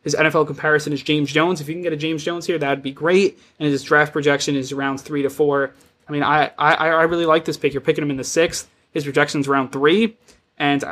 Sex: male